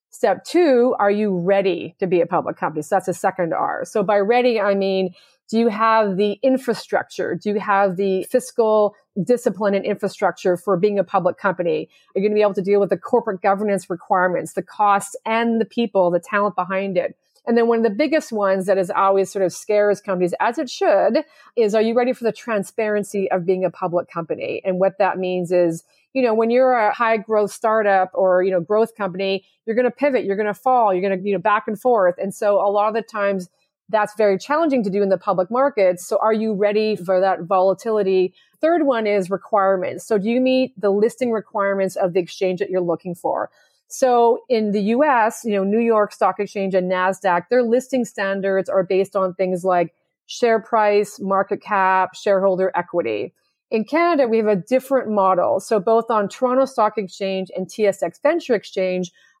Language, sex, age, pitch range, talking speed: English, female, 40-59, 190-225 Hz, 210 wpm